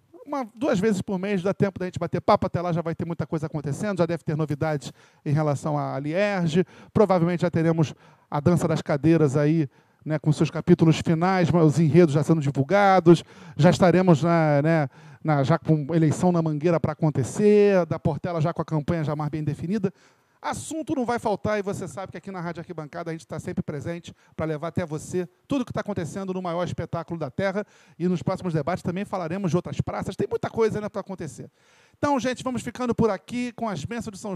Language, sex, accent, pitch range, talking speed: Portuguese, male, Brazilian, 155-190 Hz, 215 wpm